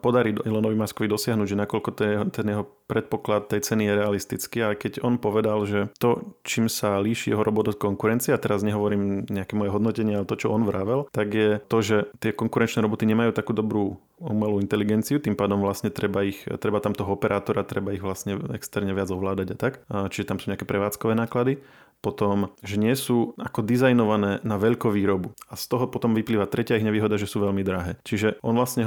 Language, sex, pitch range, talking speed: Slovak, male, 100-110 Hz, 200 wpm